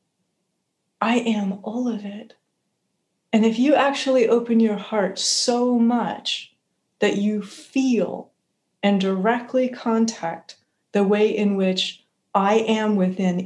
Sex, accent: female, American